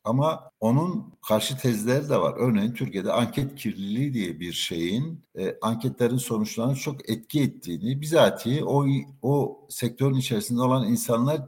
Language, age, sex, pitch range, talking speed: Turkish, 60-79, male, 100-135 Hz, 135 wpm